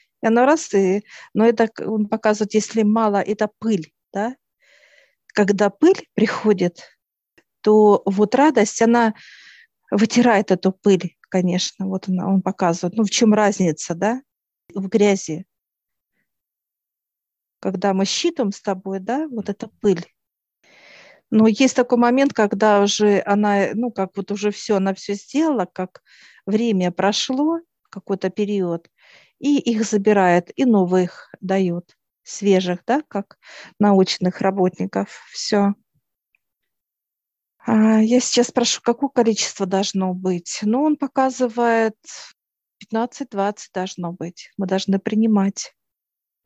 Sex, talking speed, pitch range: female, 115 wpm, 190-225 Hz